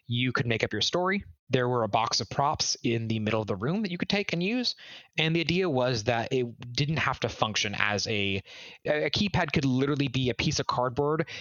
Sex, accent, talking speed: male, American, 235 wpm